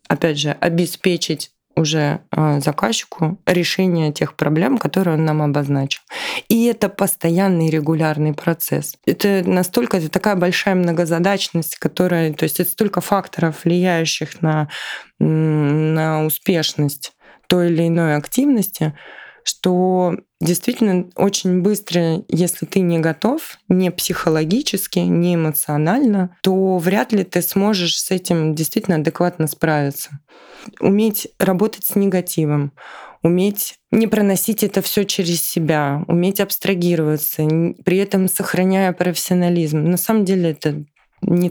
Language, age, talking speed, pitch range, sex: Russian, 20-39, 115 wpm, 155-190 Hz, female